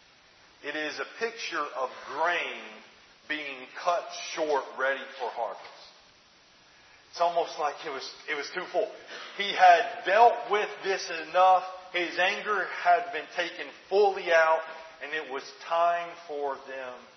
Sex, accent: male, American